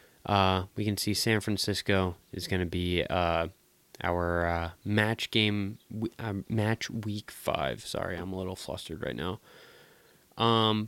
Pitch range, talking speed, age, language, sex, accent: 95-120 Hz, 150 wpm, 20-39, English, male, American